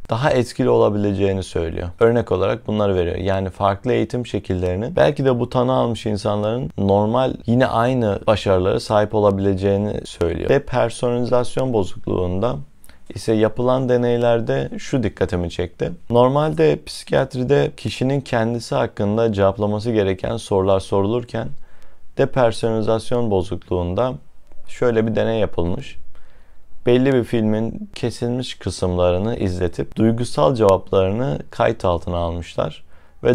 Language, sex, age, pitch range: Turkish, male, 30-49, 95-120 Hz